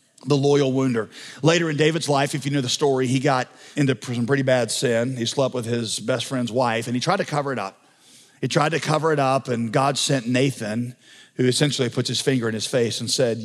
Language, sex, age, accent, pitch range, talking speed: English, male, 40-59, American, 125-185 Hz, 235 wpm